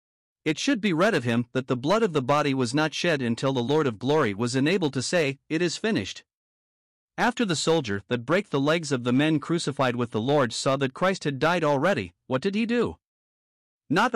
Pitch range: 125-160 Hz